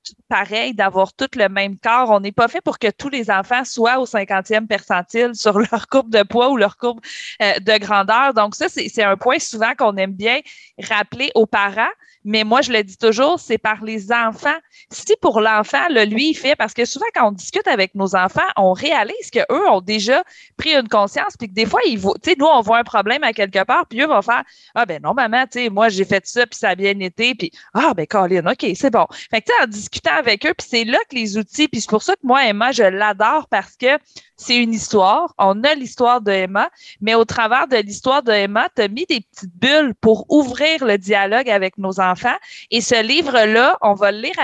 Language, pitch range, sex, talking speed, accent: French, 210-275 Hz, female, 235 wpm, Canadian